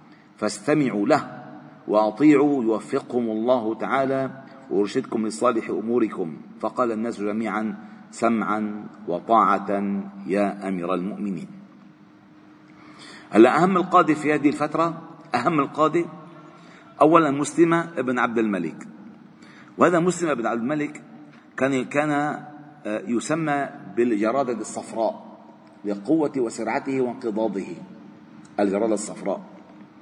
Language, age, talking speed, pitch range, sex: Arabic, 50-69, 90 wpm, 110-155 Hz, male